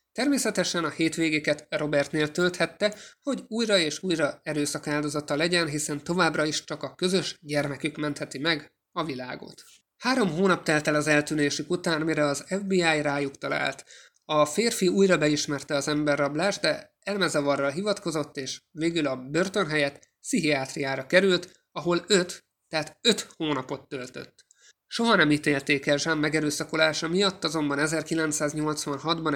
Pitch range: 145-175 Hz